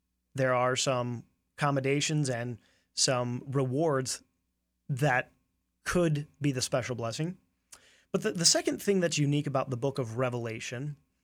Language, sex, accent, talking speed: English, male, American, 135 wpm